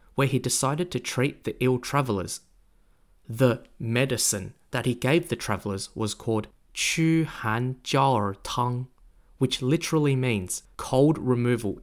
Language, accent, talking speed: English, Australian, 130 wpm